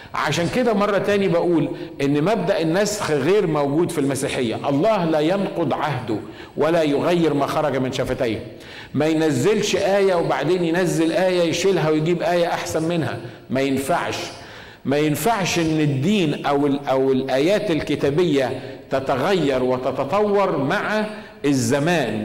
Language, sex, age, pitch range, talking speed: Arabic, male, 50-69, 140-180 Hz, 125 wpm